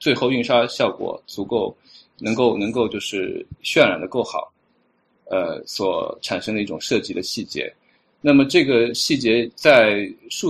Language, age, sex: Chinese, 20-39, male